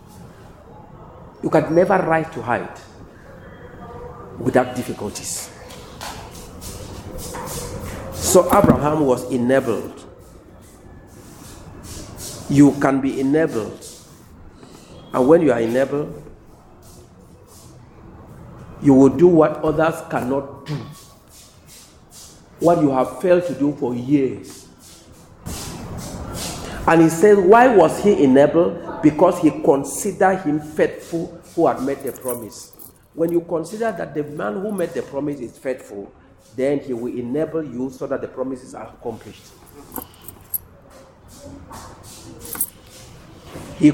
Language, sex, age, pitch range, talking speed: English, male, 50-69, 125-165 Hz, 105 wpm